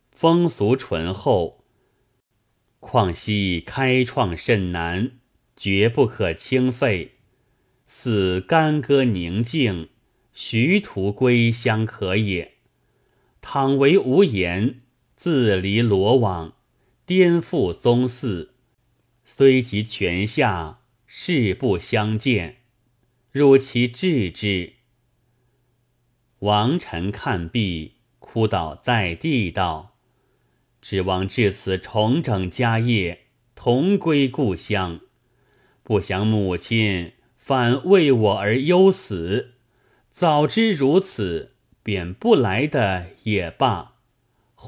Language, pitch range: Chinese, 100-130 Hz